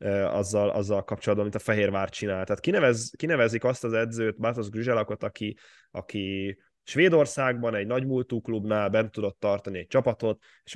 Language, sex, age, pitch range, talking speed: Hungarian, male, 10-29, 100-125 Hz, 155 wpm